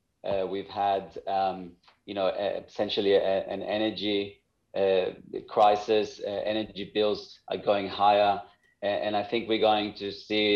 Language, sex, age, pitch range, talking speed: English, male, 30-49, 100-115 Hz, 150 wpm